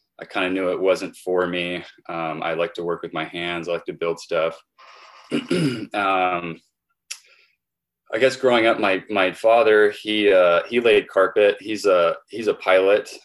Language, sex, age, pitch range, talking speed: English, male, 20-39, 85-105 Hz, 175 wpm